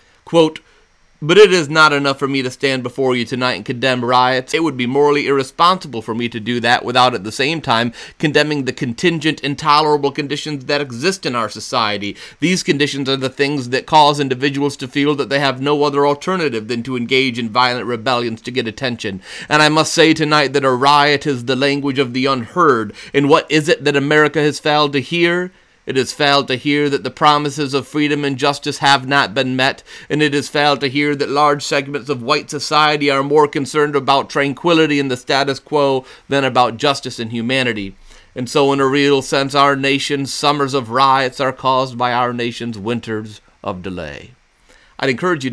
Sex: male